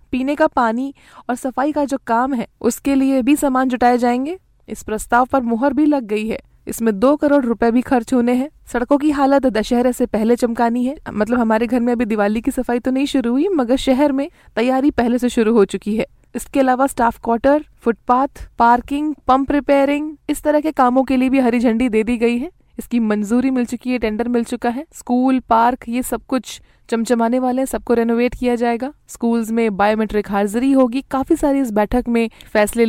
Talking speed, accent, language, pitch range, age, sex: 205 wpm, native, Hindi, 225-265 Hz, 20-39, female